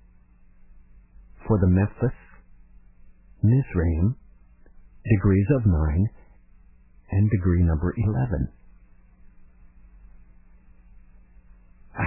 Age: 50-69